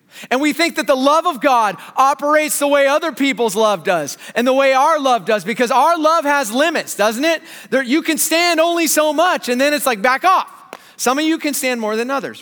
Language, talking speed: English, 230 wpm